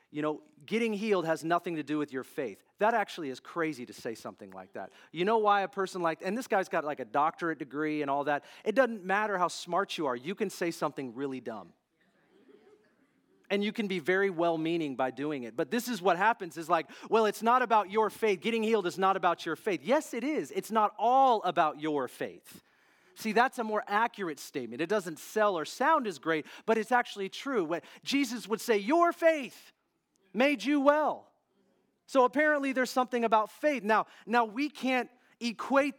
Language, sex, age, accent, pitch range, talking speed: English, male, 40-59, American, 170-230 Hz, 205 wpm